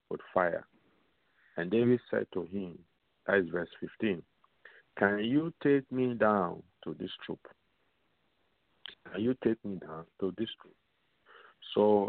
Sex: male